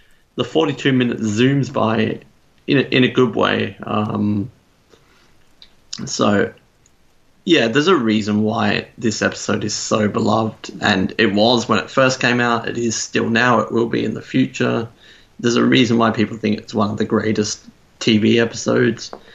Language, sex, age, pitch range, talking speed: English, male, 30-49, 110-125 Hz, 165 wpm